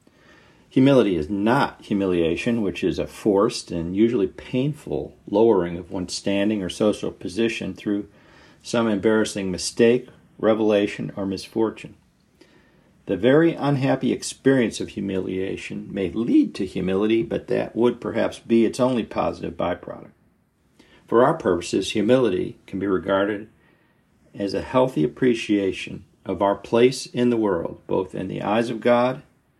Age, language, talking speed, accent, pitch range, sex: 50-69, English, 135 wpm, American, 100-120 Hz, male